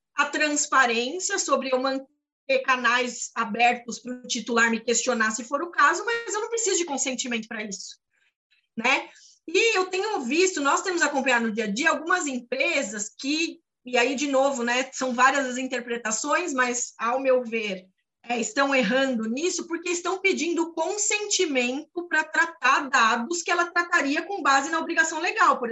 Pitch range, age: 255-345 Hz, 20-39